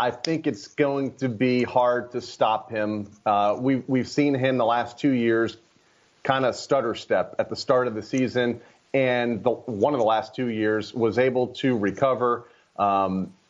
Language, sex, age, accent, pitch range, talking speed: English, male, 30-49, American, 115-140 Hz, 180 wpm